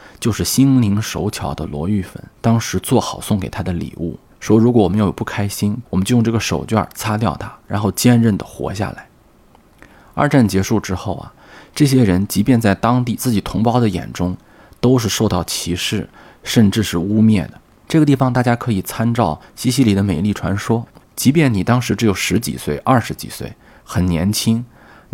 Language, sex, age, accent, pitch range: Chinese, male, 20-39, native, 95-120 Hz